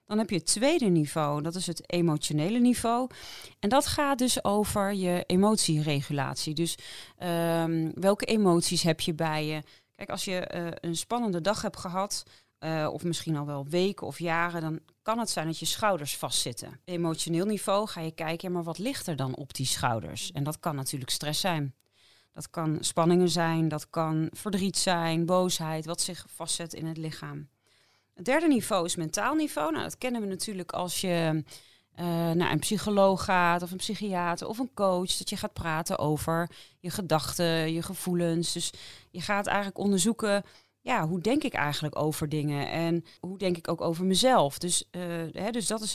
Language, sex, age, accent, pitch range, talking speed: Dutch, female, 30-49, Dutch, 160-195 Hz, 185 wpm